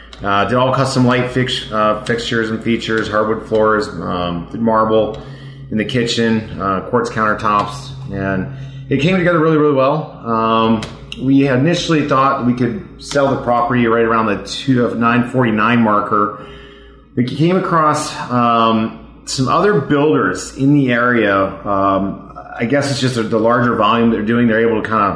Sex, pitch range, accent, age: male, 110-135 Hz, American, 30-49